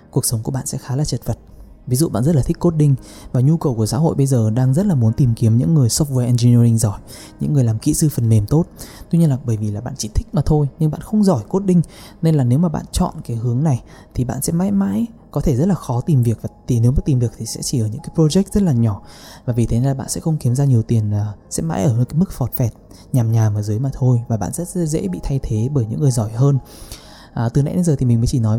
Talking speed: 295 wpm